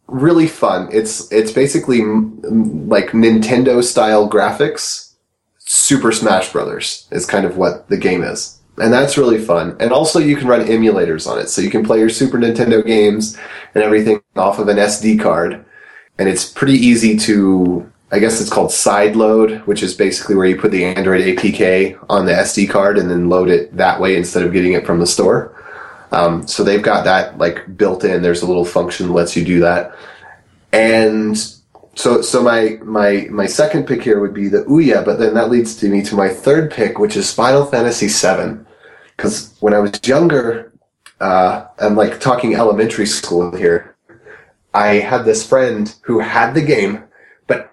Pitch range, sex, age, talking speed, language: 100-125 Hz, male, 30-49, 185 wpm, English